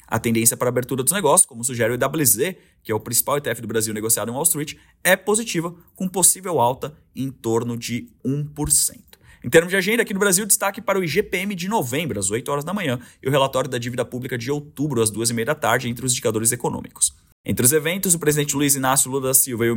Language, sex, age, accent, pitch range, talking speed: Portuguese, male, 20-39, Brazilian, 115-165 Hz, 235 wpm